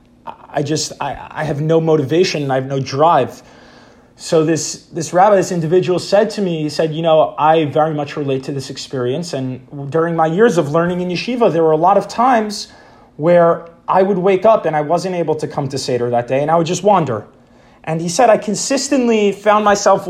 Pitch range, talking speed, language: 150-200 Hz, 220 wpm, English